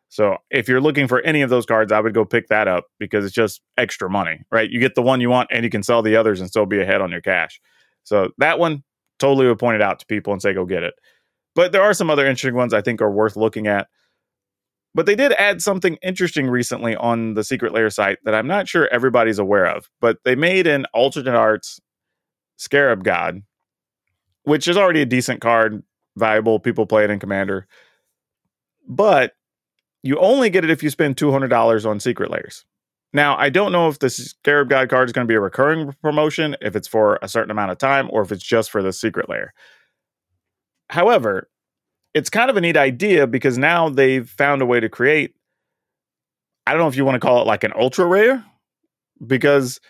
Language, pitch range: English, 110-145 Hz